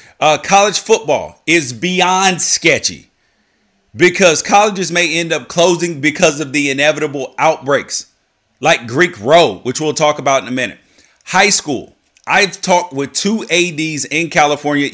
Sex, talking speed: male, 145 wpm